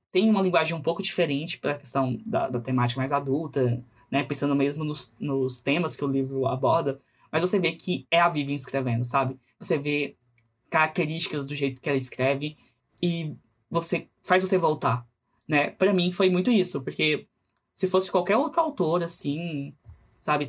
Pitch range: 135-175 Hz